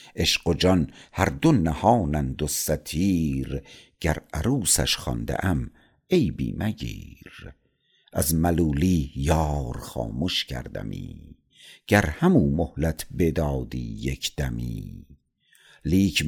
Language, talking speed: Persian, 90 wpm